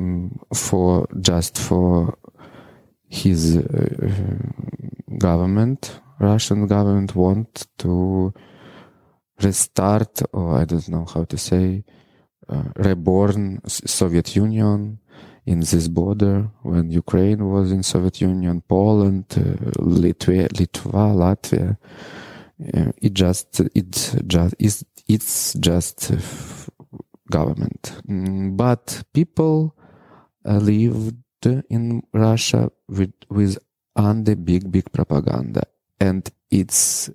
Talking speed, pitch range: 95 wpm, 90-120 Hz